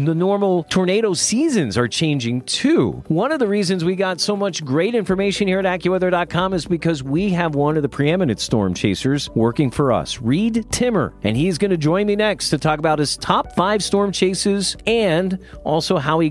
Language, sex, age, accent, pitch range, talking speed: English, male, 40-59, American, 145-195 Hz, 200 wpm